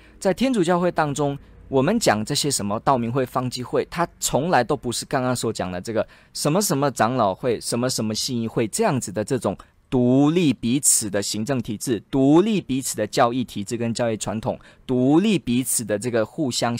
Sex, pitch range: male, 115-185 Hz